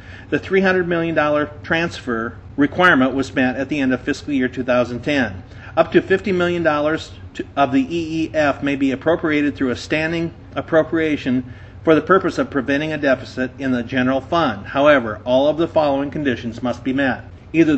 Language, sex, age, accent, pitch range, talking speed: English, male, 40-59, American, 125-150 Hz, 165 wpm